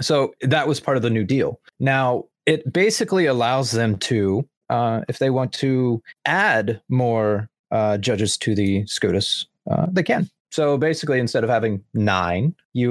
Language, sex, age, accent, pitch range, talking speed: English, male, 30-49, American, 110-145 Hz, 165 wpm